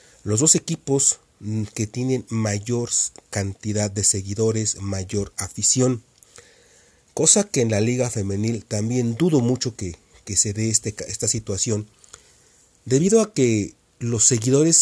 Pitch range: 105-130 Hz